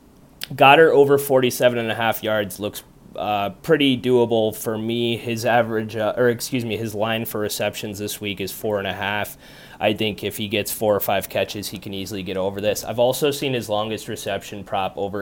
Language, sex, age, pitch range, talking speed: English, male, 20-39, 100-120 Hz, 210 wpm